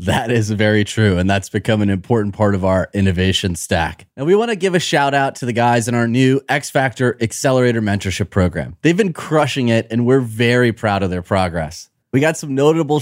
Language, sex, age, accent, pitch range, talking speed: English, male, 30-49, American, 105-140 Hz, 210 wpm